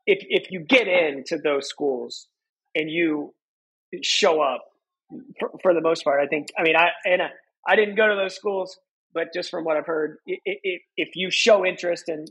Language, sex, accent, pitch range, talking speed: English, male, American, 150-195 Hz, 205 wpm